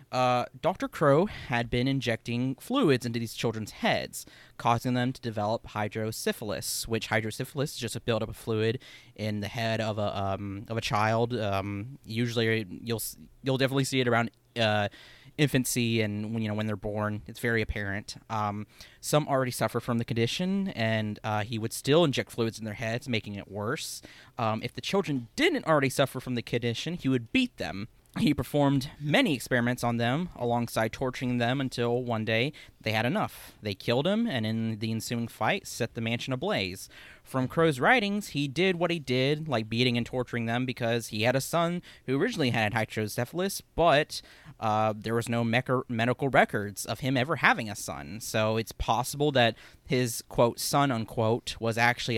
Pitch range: 110-130 Hz